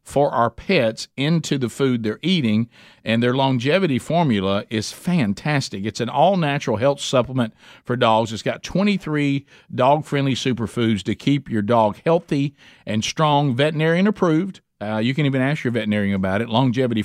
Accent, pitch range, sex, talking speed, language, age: American, 110-145 Hz, male, 155 wpm, English, 50-69